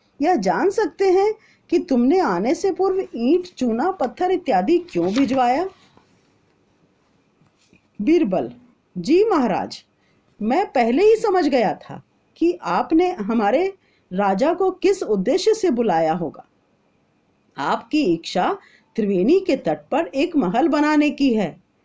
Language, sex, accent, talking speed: Hindi, female, native, 125 wpm